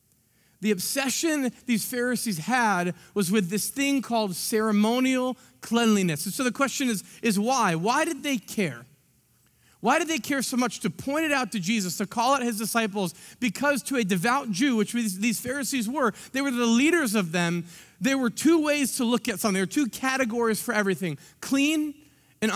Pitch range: 215-275 Hz